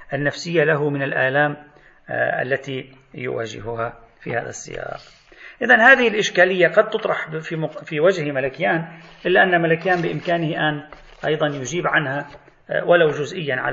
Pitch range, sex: 130-175 Hz, male